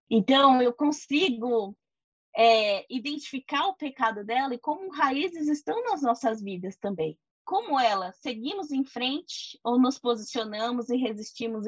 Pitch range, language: 215-270 Hz, Portuguese